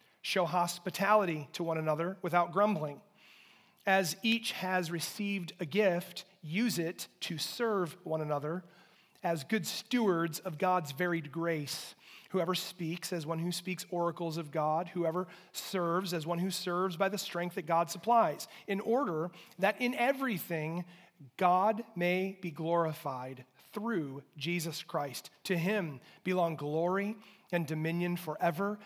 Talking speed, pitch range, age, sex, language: 135 wpm, 160-190 Hz, 30-49, male, English